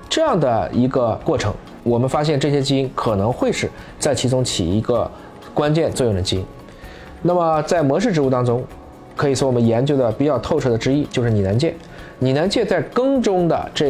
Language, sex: Chinese, male